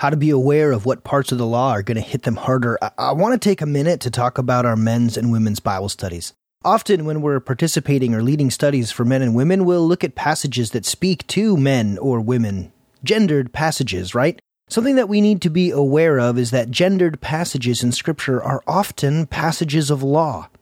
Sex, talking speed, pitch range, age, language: male, 220 wpm, 130-175 Hz, 30-49, English